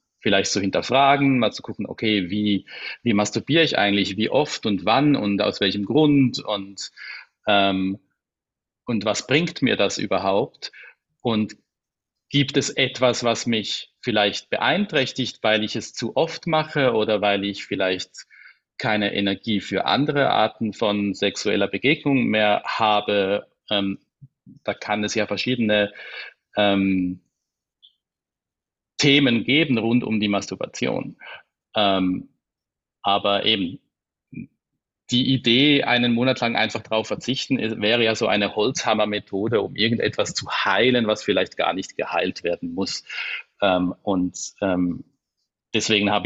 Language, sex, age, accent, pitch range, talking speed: German, male, 40-59, German, 100-120 Hz, 130 wpm